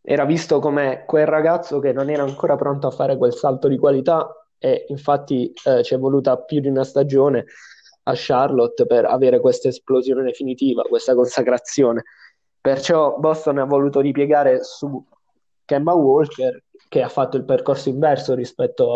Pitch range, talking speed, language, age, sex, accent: 135-185 Hz, 160 wpm, Italian, 20-39, male, native